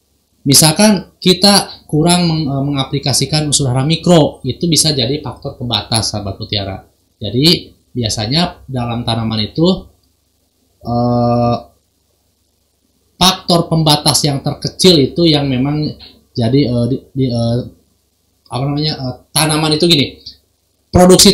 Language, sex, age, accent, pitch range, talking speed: Indonesian, male, 20-39, native, 105-150 Hz, 110 wpm